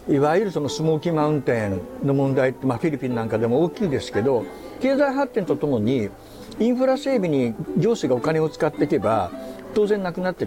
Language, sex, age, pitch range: Japanese, male, 60-79, 125-200 Hz